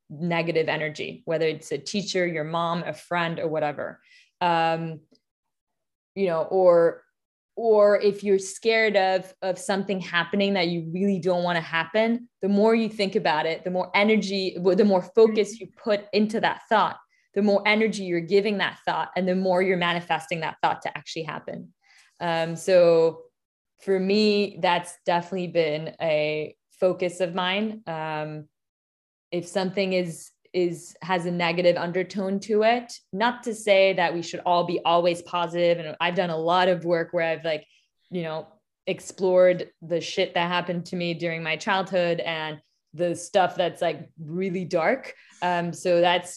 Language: English